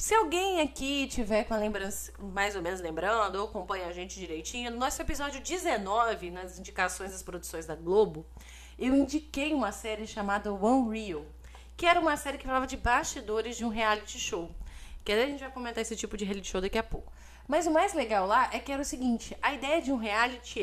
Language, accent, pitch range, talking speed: Portuguese, Brazilian, 195-295 Hz, 210 wpm